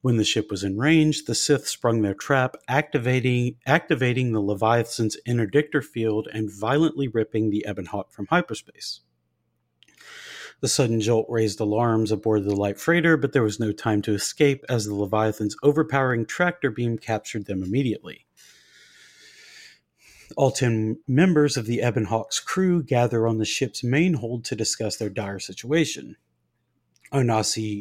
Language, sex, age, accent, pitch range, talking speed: English, male, 40-59, American, 110-140 Hz, 150 wpm